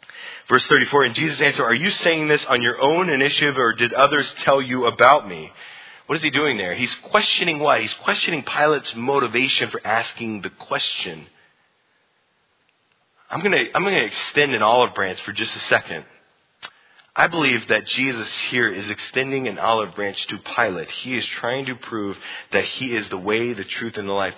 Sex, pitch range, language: male, 120-160 Hz, English